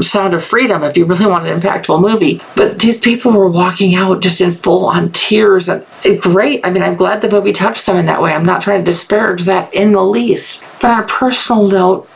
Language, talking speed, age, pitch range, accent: English, 235 wpm, 40-59, 190-240 Hz, American